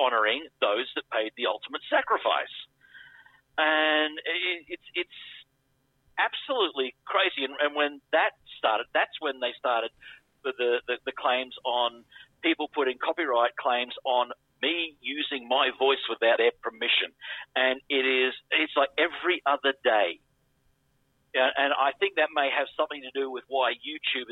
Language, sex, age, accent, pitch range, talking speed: English, male, 50-69, Australian, 130-155 Hz, 145 wpm